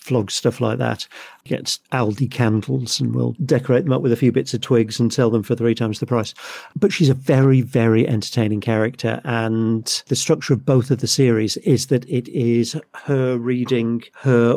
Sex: male